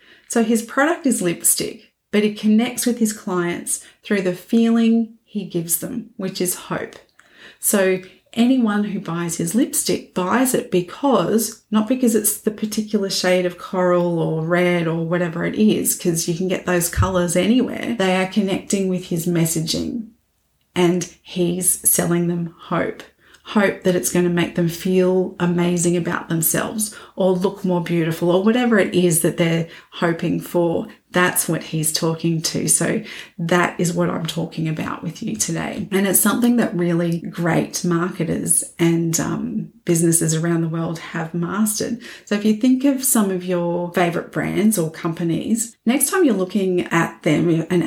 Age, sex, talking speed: 30-49, female, 165 wpm